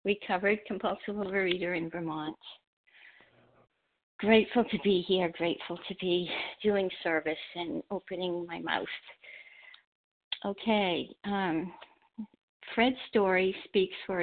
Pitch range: 165-205 Hz